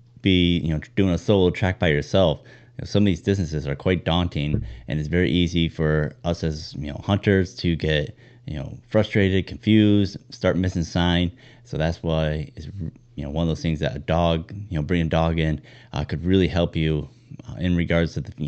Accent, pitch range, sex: American, 80-95 Hz, male